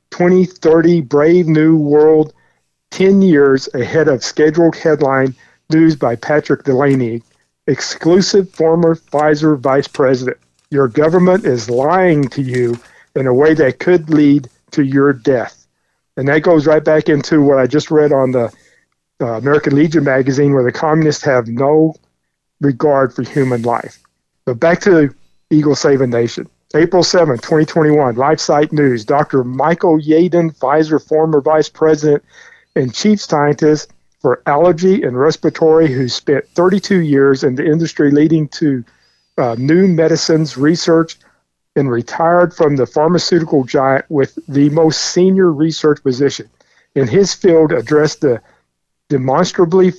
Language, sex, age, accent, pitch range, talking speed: English, male, 50-69, American, 135-160 Hz, 140 wpm